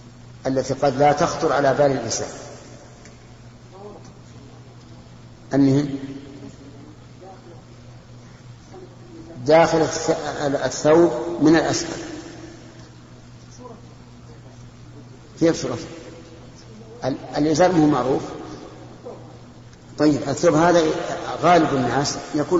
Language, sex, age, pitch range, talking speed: Arabic, male, 50-69, 120-145 Hz, 65 wpm